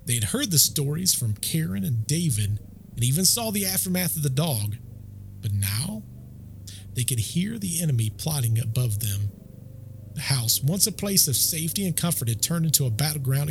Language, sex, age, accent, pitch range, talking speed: English, male, 40-59, American, 105-145 Hz, 180 wpm